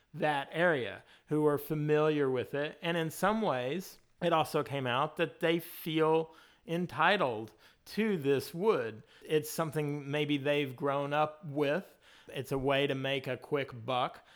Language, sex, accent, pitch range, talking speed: English, male, American, 130-150 Hz, 155 wpm